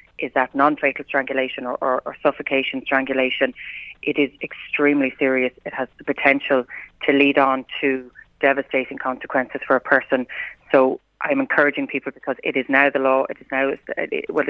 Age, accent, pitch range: 30-49, Irish, 130-140 Hz